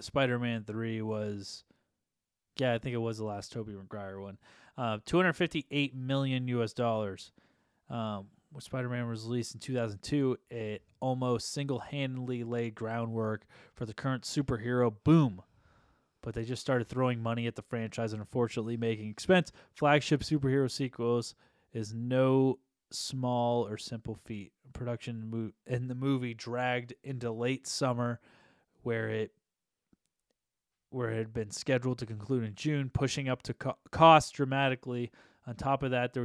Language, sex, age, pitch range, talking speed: English, male, 20-39, 110-130 Hz, 145 wpm